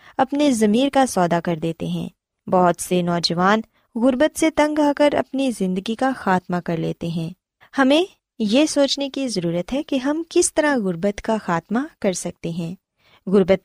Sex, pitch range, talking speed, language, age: female, 180-270 Hz, 170 wpm, Punjabi, 20-39